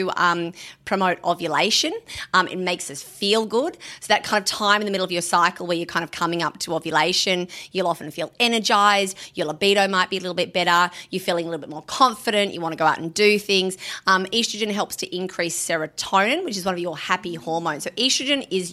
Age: 30-49